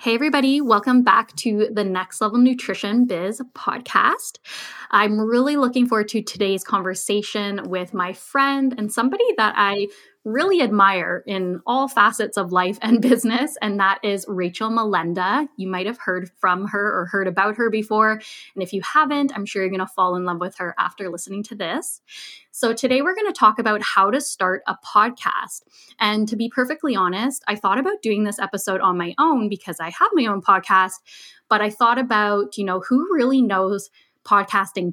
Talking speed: 190 wpm